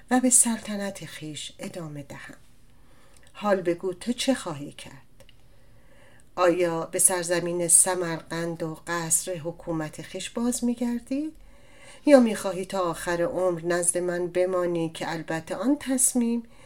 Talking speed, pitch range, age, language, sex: 125 wpm, 155-225 Hz, 40-59, Persian, female